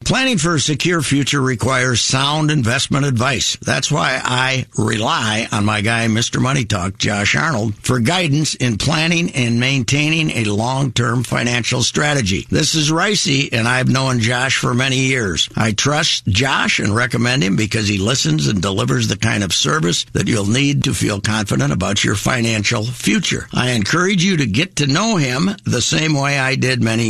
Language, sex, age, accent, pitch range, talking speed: English, male, 60-79, American, 110-140 Hz, 175 wpm